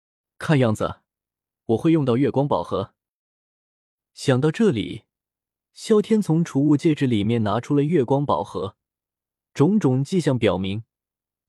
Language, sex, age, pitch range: Chinese, male, 20-39, 105-165 Hz